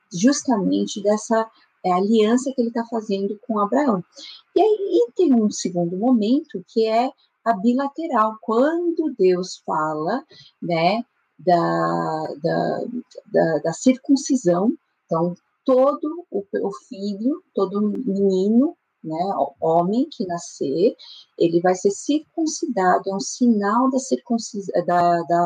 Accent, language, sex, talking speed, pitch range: Brazilian, Portuguese, female, 120 wpm, 190-260 Hz